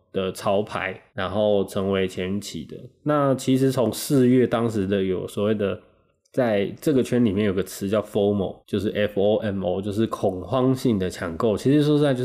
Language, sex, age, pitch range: Chinese, male, 20-39, 100-125 Hz